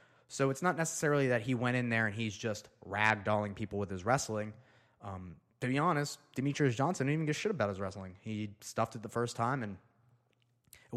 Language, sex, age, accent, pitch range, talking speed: English, male, 20-39, American, 105-125 Hz, 210 wpm